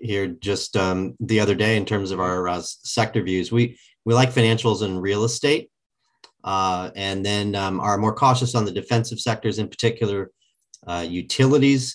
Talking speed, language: 175 wpm, English